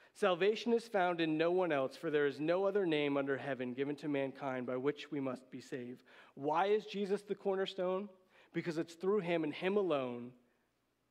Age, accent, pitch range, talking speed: 40-59, American, 145-200 Hz, 195 wpm